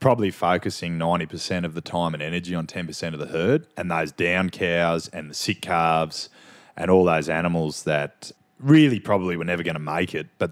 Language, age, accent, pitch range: English, 20-39, Australian, 80-105 Hz